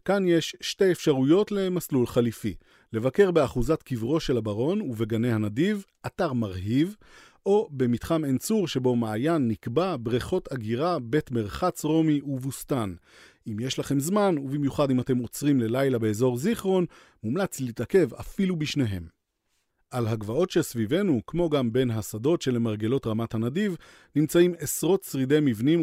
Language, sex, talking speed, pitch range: Hebrew, male, 130 wpm, 115-160 Hz